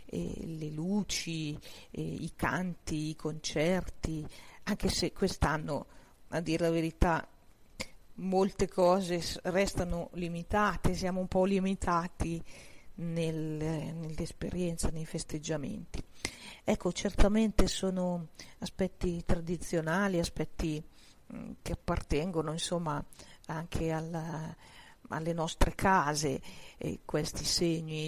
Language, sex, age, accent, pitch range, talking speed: Italian, female, 50-69, native, 155-185 Hz, 90 wpm